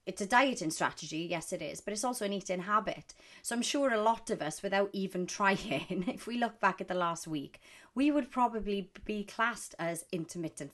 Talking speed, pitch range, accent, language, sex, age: 210 wpm, 165-215 Hz, British, English, female, 30-49